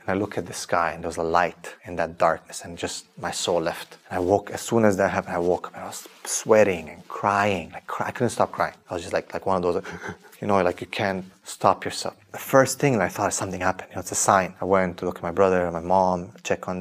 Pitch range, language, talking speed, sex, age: 90-100 Hz, English, 290 wpm, male, 30-49